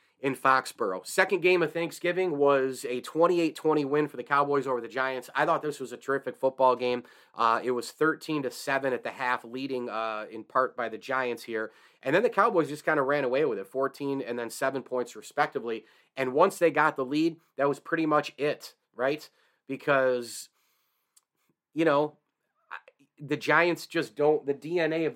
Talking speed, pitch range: 190 wpm, 125-155 Hz